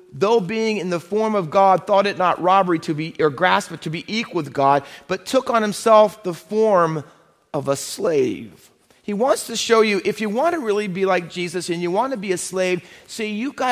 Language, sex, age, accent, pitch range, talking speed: English, male, 40-59, American, 170-230 Hz, 230 wpm